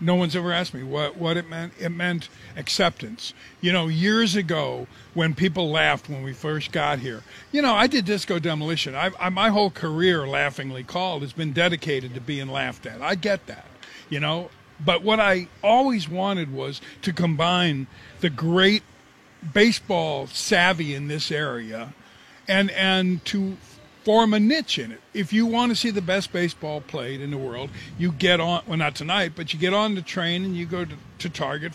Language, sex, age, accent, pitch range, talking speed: English, male, 50-69, American, 150-195 Hz, 195 wpm